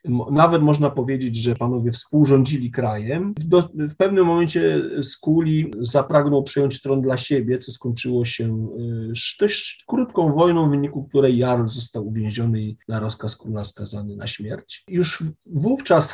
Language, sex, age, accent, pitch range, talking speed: Polish, male, 40-59, native, 120-150 Hz, 145 wpm